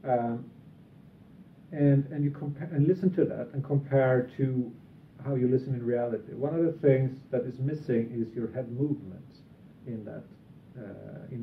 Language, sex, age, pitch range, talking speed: English, male, 40-59, 120-145 Hz, 170 wpm